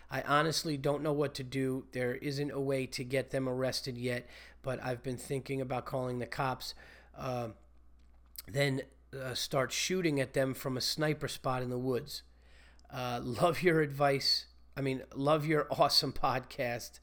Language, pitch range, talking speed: English, 115-135 Hz, 175 wpm